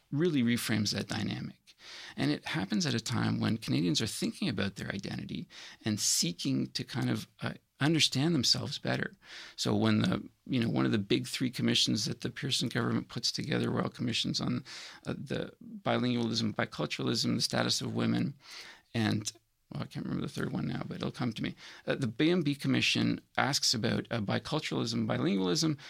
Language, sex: English, male